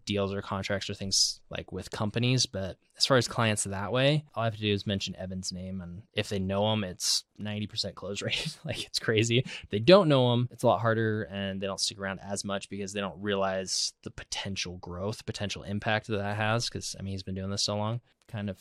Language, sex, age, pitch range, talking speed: English, male, 20-39, 95-115 Hz, 240 wpm